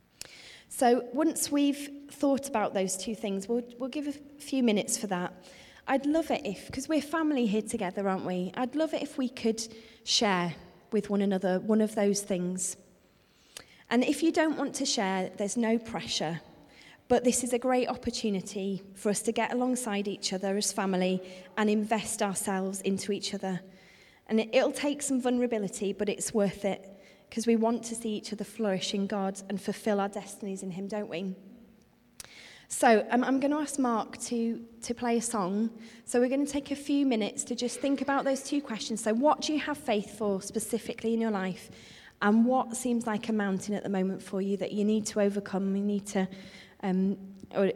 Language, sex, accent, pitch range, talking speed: English, female, British, 195-245 Hz, 200 wpm